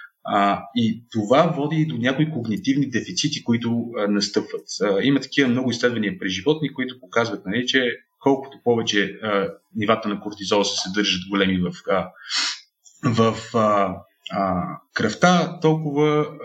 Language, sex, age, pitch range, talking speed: Bulgarian, male, 30-49, 105-150 Hz, 145 wpm